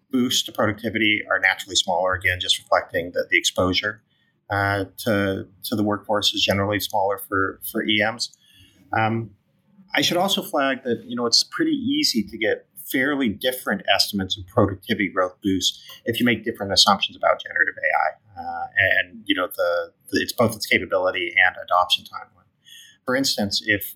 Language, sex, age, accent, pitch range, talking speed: English, male, 30-49, American, 100-155 Hz, 170 wpm